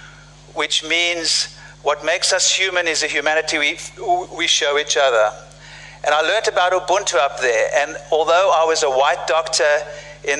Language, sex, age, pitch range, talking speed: English, male, 50-69, 145-180 Hz, 165 wpm